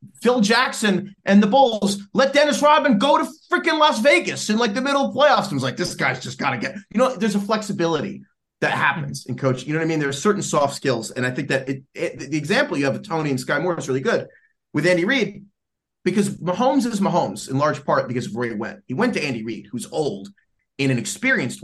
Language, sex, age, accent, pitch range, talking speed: English, male, 30-49, American, 155-230 Hz, 250 wpm